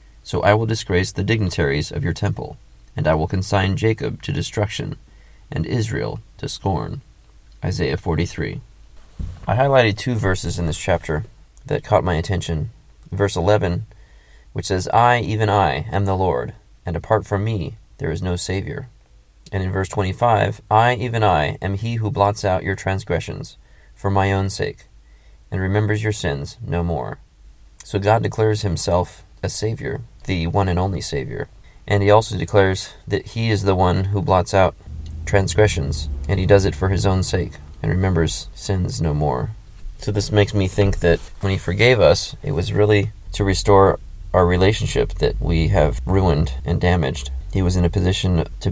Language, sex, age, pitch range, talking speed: English, male, 30-49, 85-105 Hz, 175 wpm